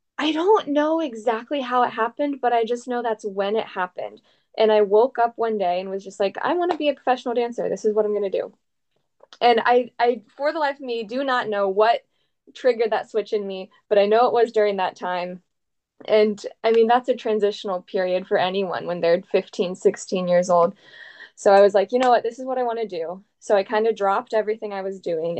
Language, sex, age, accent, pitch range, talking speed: English, female, 10-29, American, 190-230 Hz, 240 wpm